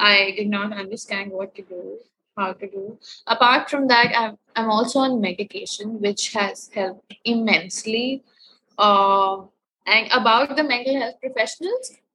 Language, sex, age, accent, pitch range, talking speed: English, female, 20-39, Indian, 200-235 Hz, 140 wpm